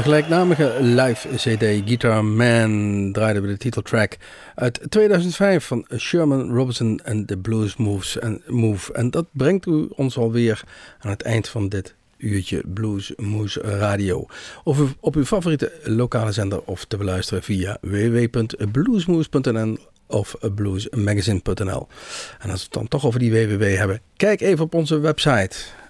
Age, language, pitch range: 50-69, Dutch, 105-145 Hz